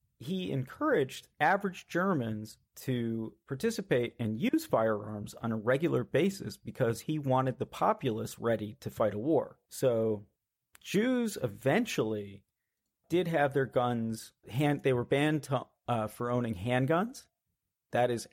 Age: 40-59